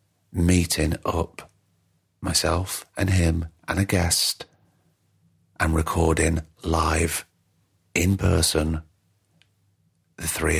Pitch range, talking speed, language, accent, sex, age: 80-95 Hz, 85 wpm, English, British, male, 40-59